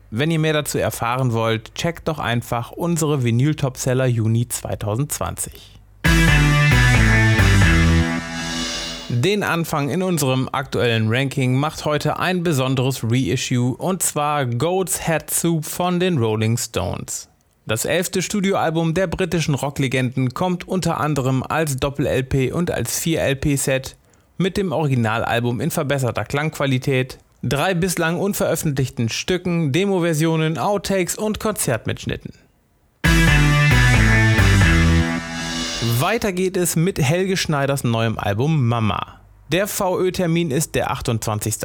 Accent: German